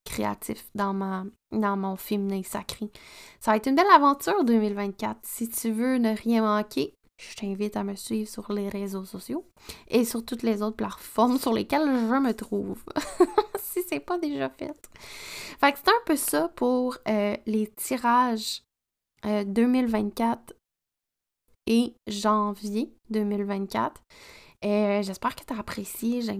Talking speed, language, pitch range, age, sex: 150 wpm, French, 210-250 Hz, 20-39, female